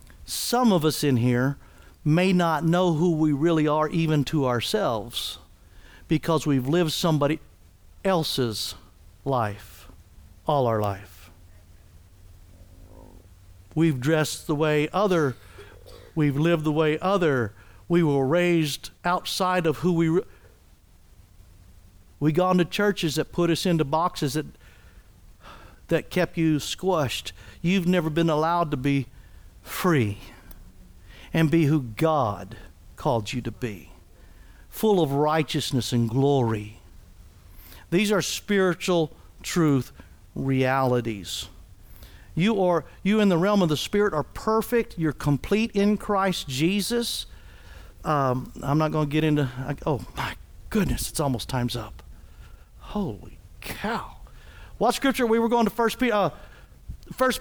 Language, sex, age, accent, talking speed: English, male, 60-79, American, 130 wpm